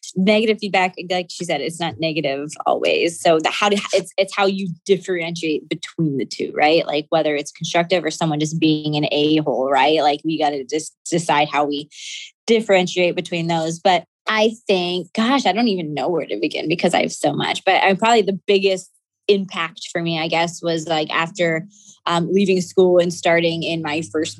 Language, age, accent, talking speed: English, 20-39, American, 200 wpm